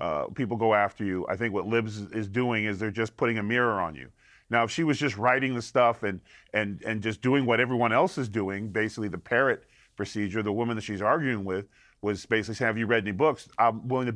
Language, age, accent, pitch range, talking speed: English, 40-59, American, 115-140 Hz, 245 wpm